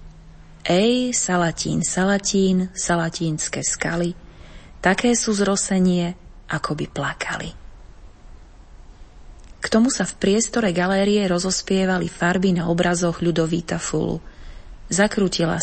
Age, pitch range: 30-49, 170-205 Hz